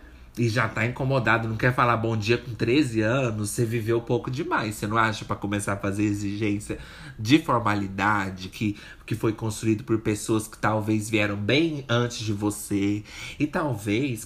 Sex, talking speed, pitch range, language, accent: male, 175 wpm, 105-145 Hz, Portuguese, Brazilian